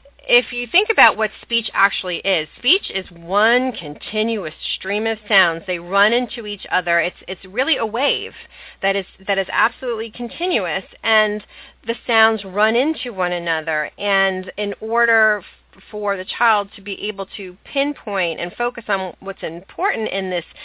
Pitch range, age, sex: 175-220 Hz, 30-49, female